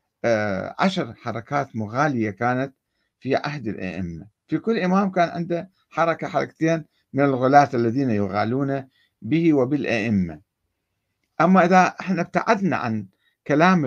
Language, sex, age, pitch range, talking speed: Arabic, male, 60-79, 105-170 Hz, 110 wpm